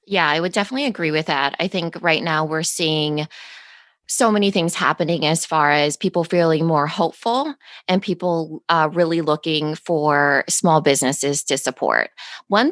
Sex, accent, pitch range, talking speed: female, American, 145-180 Hz, 165 wpm